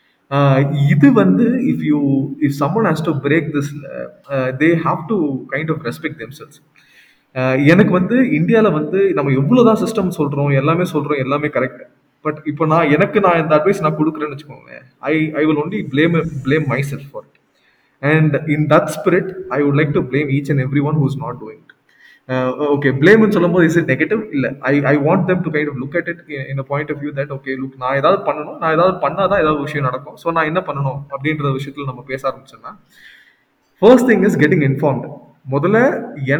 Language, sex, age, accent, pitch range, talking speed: Tamil, male, 20-39, native, 135-160 Hz, 155 wpm